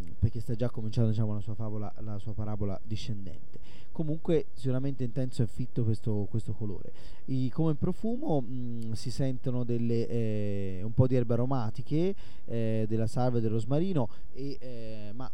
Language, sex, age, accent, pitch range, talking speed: Italian, male, 20-39, native, 110-135 Hz, 165 wpm